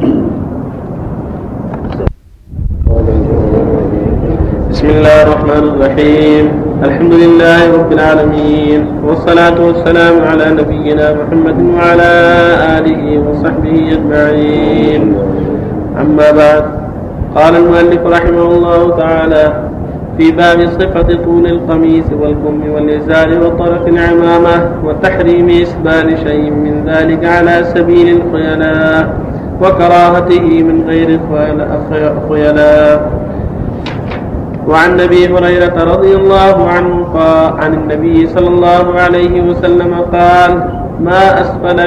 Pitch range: 150-175 Hz